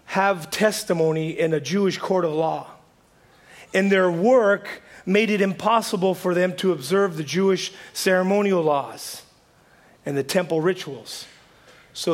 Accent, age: American, 40-59